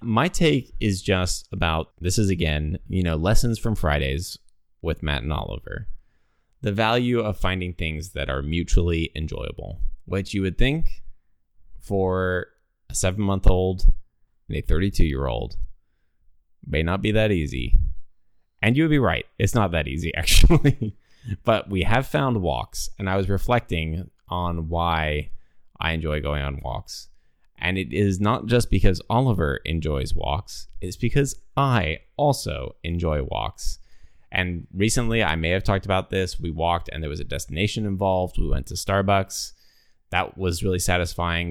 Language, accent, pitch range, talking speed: English, American, 80-100 Hz, 155 wpm